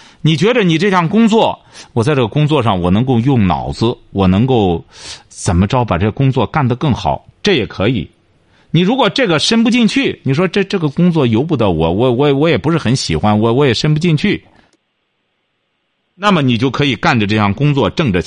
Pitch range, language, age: 95-155 Hz, Chinese, 50-69